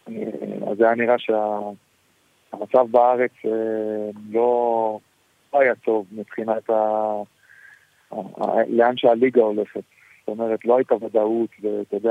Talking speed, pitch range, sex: 110 wpm, 105-120 Hz, male